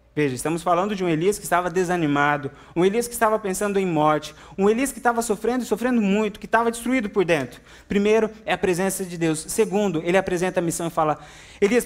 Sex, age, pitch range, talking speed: male, 20-39, 160-210 Hz, 220 wpm